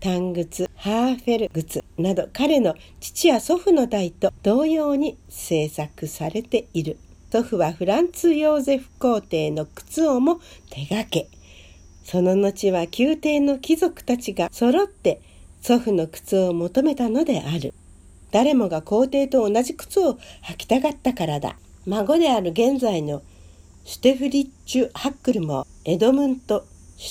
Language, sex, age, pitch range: Japanese, female, 50-69, 165-280 Hz